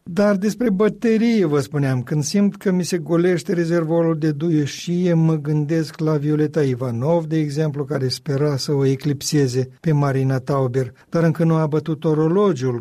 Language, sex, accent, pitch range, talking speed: Romanian, male, native, 135-170 Hz, 165 wpm